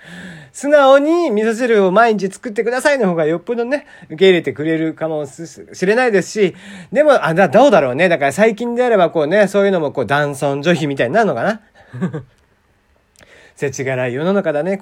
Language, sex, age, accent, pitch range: Japanese, male, 40-59, native, 155-255 Hz